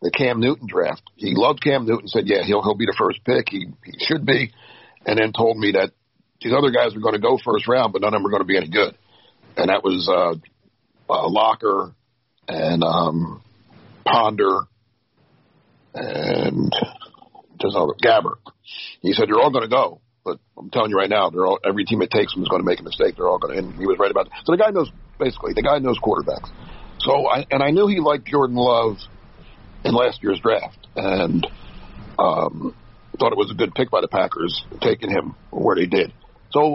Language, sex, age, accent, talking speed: English, male, 50-69, American, 215 wpm